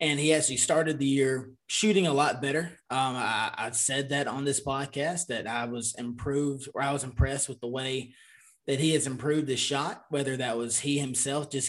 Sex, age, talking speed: male, 20-39, 210 wpm